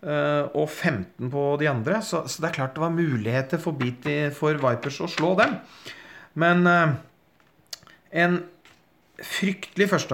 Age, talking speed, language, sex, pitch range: 40-59, 155 wpm, English, male, 125-155 Hz